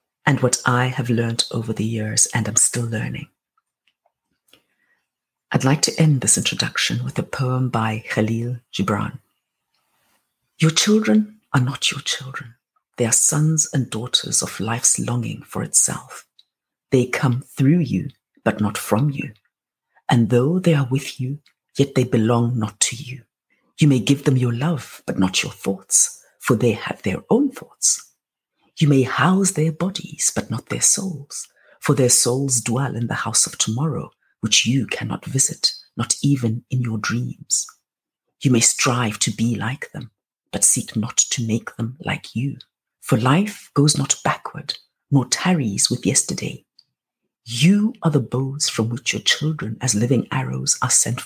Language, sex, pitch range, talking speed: English, female, 115-150 Hz, 165 wpm